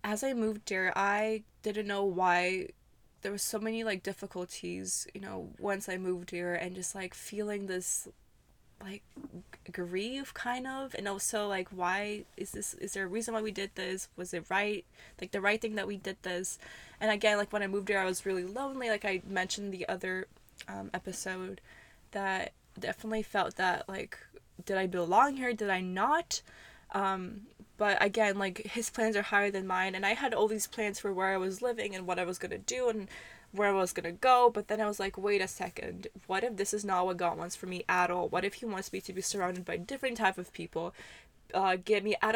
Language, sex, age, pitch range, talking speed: English, female, 20-39, 185-215 Hz, 220 wpm